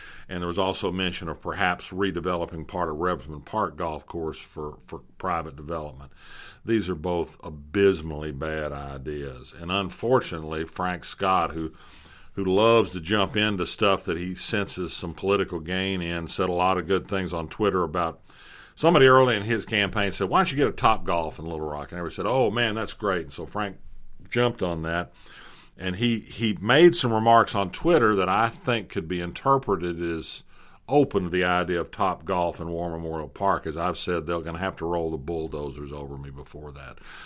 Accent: American